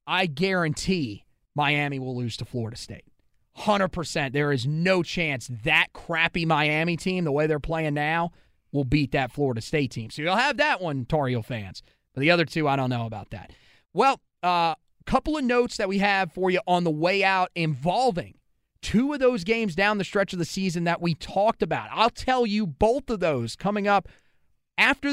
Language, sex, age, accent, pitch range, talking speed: English, male, 30-49, American, 165-240 Hz, 195 wpm